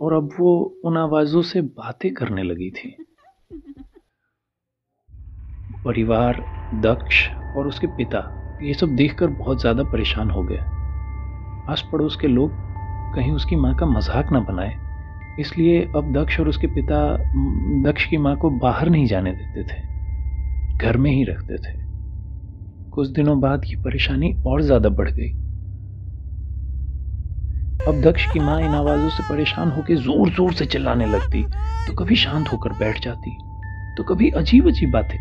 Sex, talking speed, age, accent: male, 150 wpm, 40-59, native